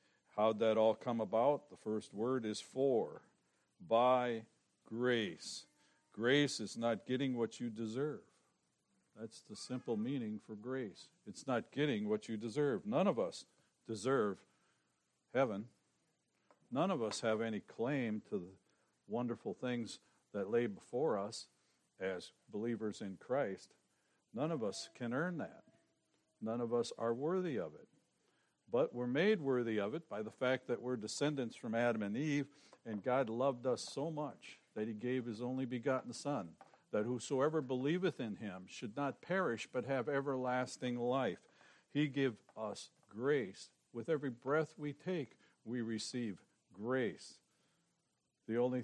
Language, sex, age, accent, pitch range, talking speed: English, male, 60-79, American, 110-135 Hz, 150 wpm